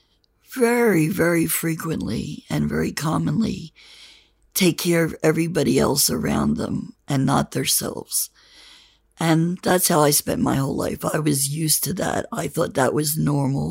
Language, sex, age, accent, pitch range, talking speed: English, female, 60-79, American, 145-170 Hz, 150 wpm